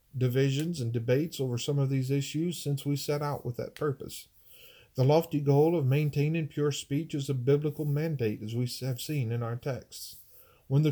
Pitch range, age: 125-150 Hz, 40-59